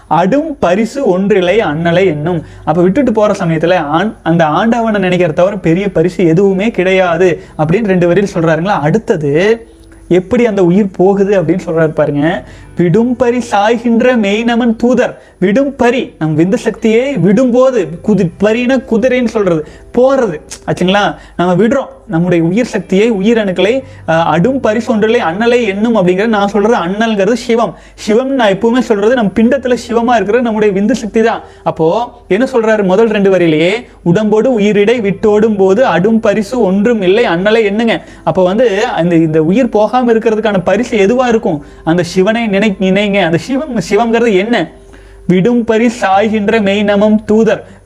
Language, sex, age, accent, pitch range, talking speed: Tamil, male, 30-49, native, 185-230 Hz, 115 wpm